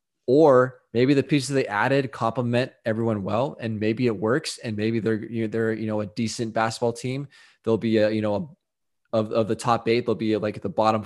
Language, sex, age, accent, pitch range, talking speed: English, male, 20-39, American, 110-125 Hz, 235 wpm